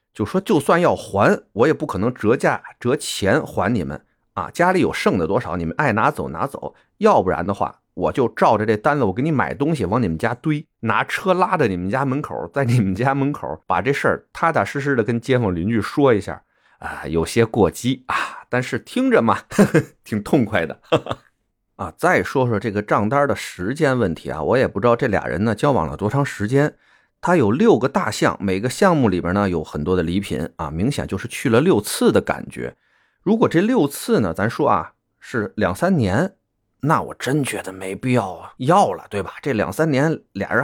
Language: Chinese